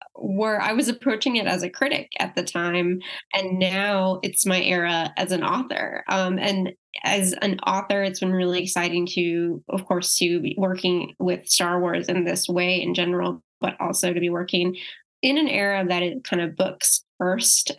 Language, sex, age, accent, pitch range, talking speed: English, female, 10-29, American, 175-200 Hz, 190 wpm